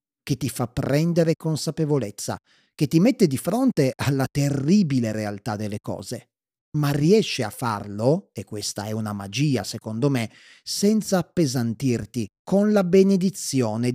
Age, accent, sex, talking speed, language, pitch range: 30-49, native, male, 135 wpm, Italian, 120-145 Hz